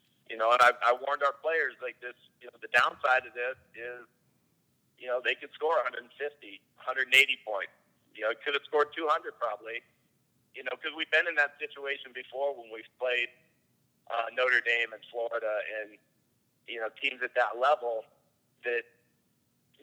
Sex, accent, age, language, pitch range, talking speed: male, American, 50-69, English, 120-140 Hz, 175 wpm